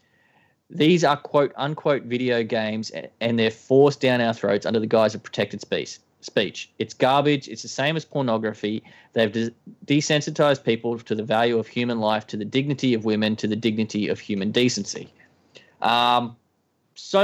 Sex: male